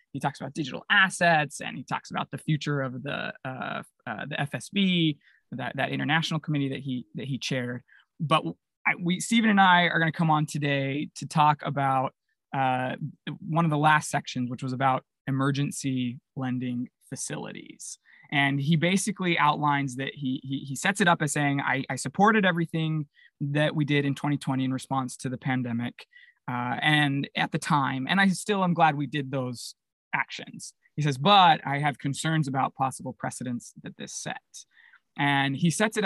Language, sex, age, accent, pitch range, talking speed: English, male, 20-39, American, 135-160 Hz, 180 wpm